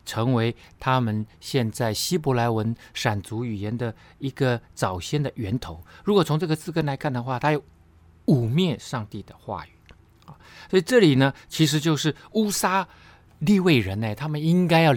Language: Chinese